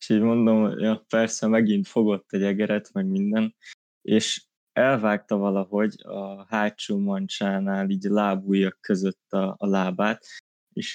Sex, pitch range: male, 100-120 Hz